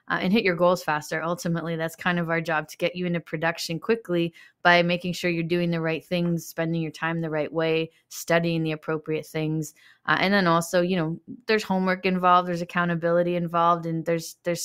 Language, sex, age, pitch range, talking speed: English, female, 20-39, 165-180 Hz, 210 wpm